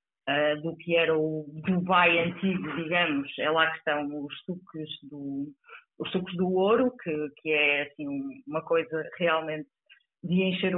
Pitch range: 155-200 Hz